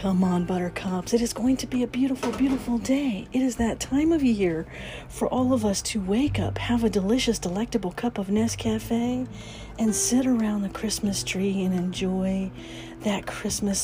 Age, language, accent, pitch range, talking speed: 40-59, English, American, 180-240 Hz, 180 wpm